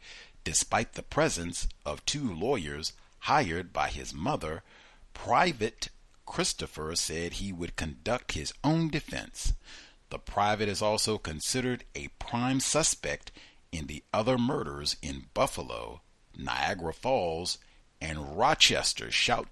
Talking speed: 115 wpm